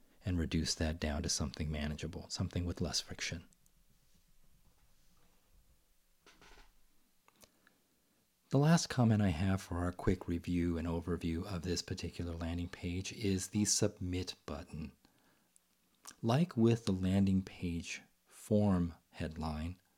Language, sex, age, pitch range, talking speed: English, male, 40-59, 90-115 Hz, 115 wpm